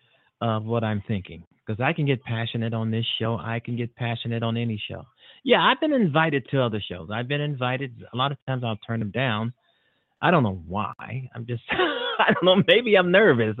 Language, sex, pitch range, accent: English, male, 110-135 Hz, American